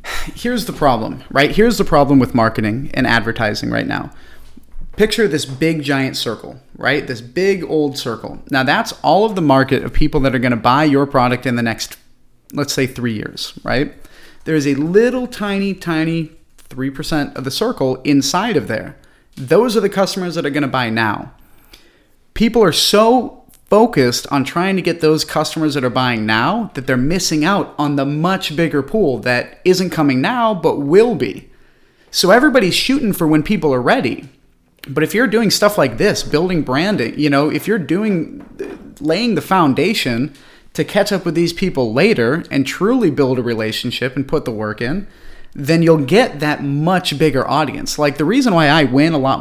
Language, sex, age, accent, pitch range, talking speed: English, male, 30-49, American, 130-175 Hz, 190 wpm